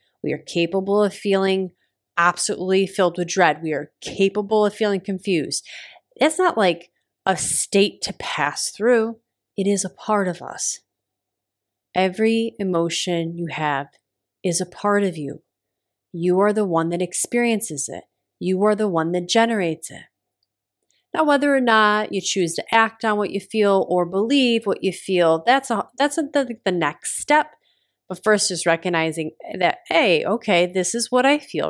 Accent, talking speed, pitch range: American, 165 wpm, 175-225 Hz